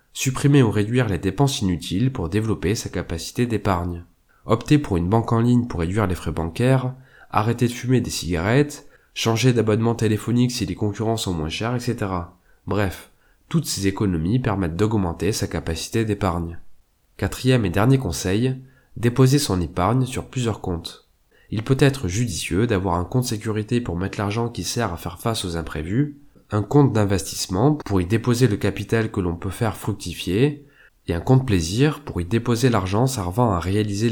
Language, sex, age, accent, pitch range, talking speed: French, male, 20-39, French, 90-125 Hz, 170 wpm